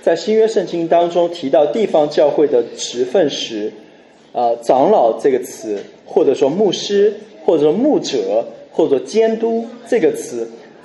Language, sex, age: Chinese, male, 20-39